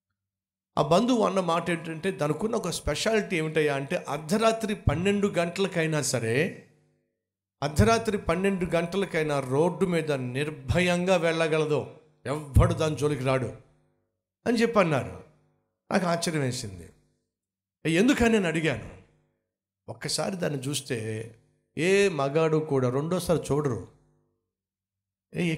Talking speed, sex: 95 wpm, male